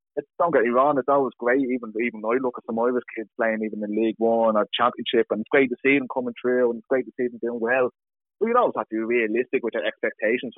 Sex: male